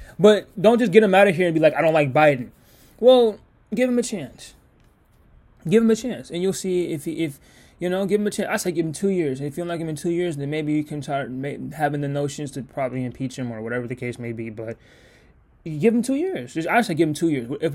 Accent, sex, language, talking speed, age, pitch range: American, male, English, 275 wpm, 20-39, 125-170 Hz